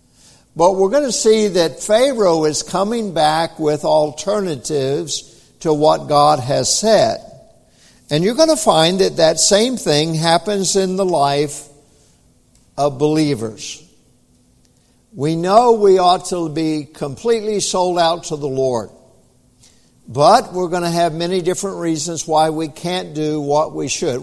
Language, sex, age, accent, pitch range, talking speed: English, male, 60-79, American, 145-210 Hz, 145 wpm